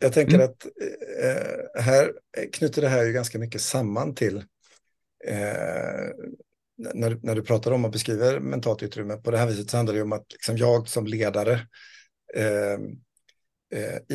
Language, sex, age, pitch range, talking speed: Swedish, male, 50-69, 105-130 Hz, 160 wpm